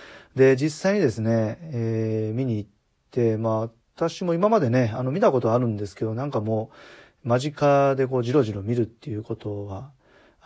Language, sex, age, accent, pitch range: Japanese, male, 40-59, native, 110-135 Hz